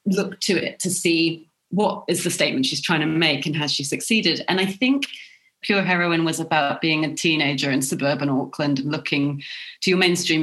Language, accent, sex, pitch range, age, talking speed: English, British, female, 145-195 Hz, 30-49, 200 wpm